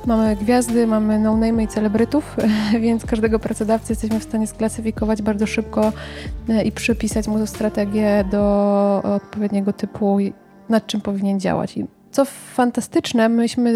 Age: 20-39